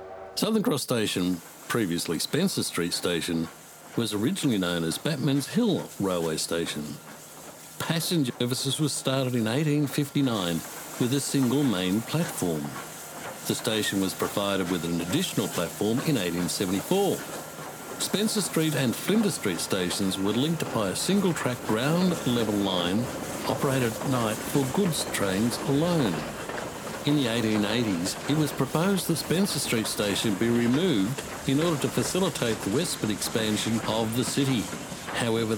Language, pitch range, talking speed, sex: English, 100-150 Hz, 135 wpm, male